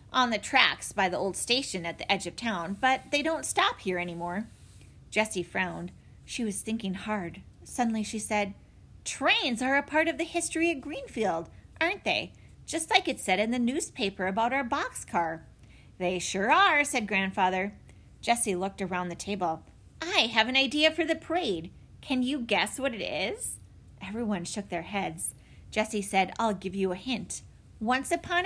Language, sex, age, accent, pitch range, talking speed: English, female, 30-49, American, 185-280 Hz, 180 wpm